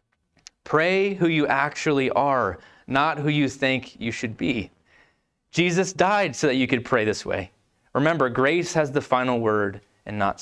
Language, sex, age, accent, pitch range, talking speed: English, male, 20-39, American, 125-165 Hz, 165 wpm